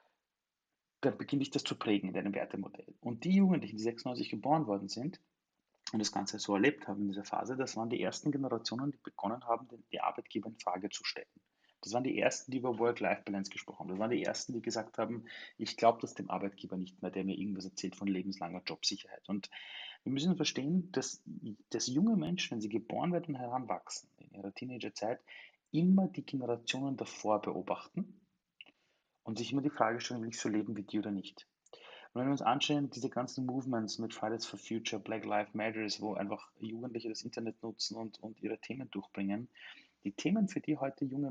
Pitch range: 105-145 Hz